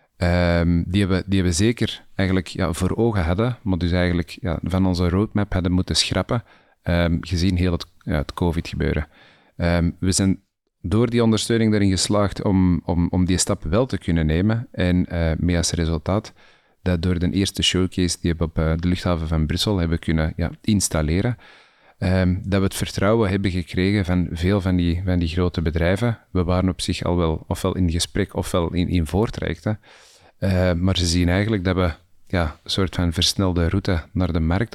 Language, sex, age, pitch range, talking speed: Dutch, male, 30-49, 85-100 Hz, 170 wpm